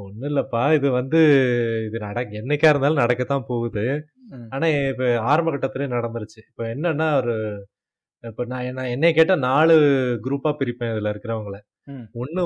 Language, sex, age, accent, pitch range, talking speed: Tamil, male, 20-39, native, 120-155 Hz, 120 wpm